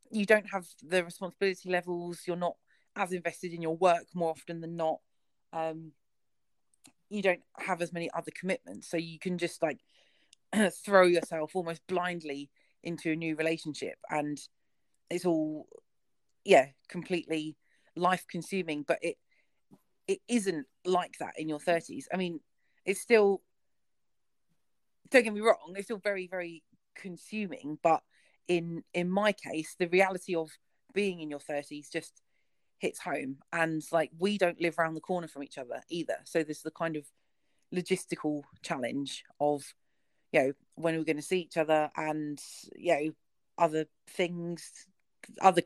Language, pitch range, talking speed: English, 160-185 Hz, 150 wpm